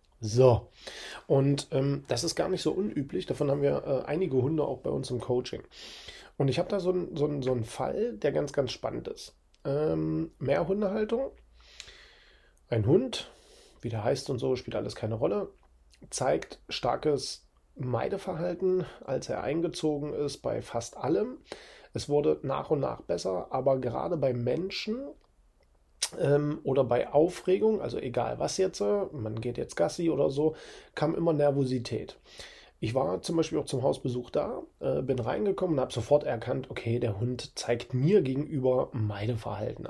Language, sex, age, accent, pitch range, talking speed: German, male, 40-59, German, 115-150 Hz, 160 wpm